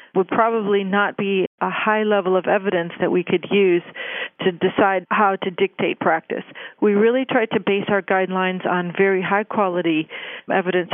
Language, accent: English, American